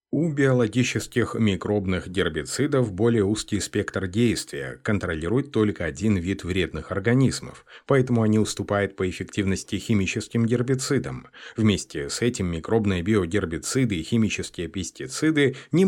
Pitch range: 95-120 Hz